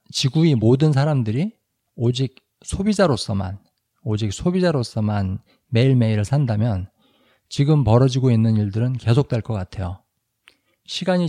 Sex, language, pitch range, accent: male, Korean, 110-145 Hz, native